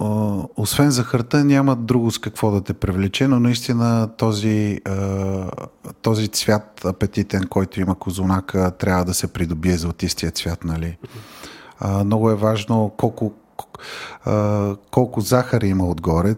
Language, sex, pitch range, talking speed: Bulgarian, male, 100-115 Hz, 135 wpm